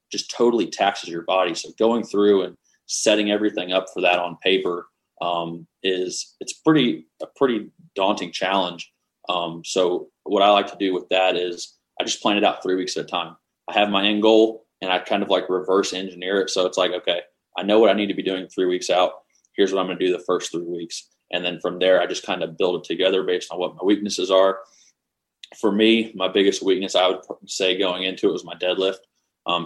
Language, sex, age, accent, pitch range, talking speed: English, male, 20-39, American, 90-100 Hz, 230 wpm